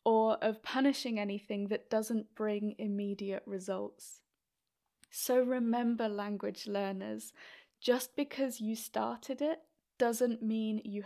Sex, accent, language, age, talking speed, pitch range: female, British, English, 20-39, 115 wpm, 215-250 Hz